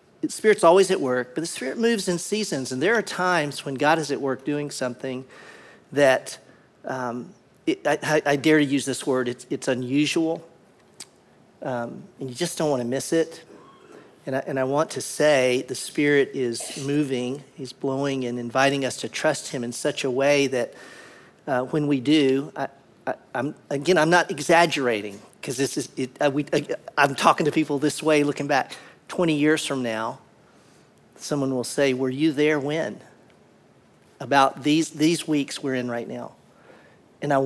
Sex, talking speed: male, 175 wpm